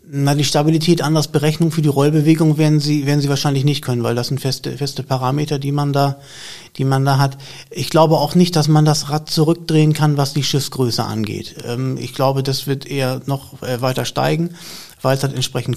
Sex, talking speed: male, 205 wpm